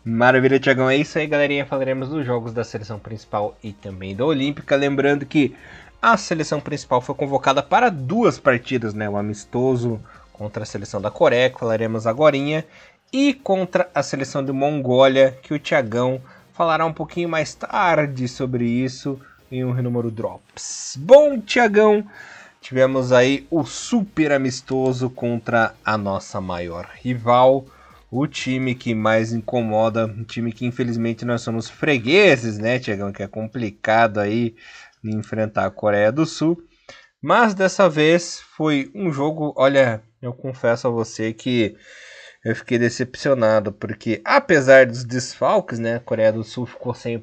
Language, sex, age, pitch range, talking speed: Portuguese, male, 20-39, 110-140 Hz, 150 wpm